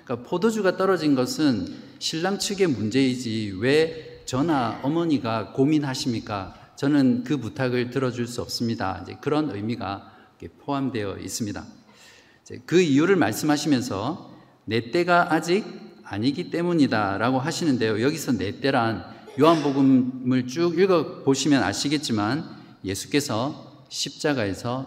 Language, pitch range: Korean, 110-155 Hz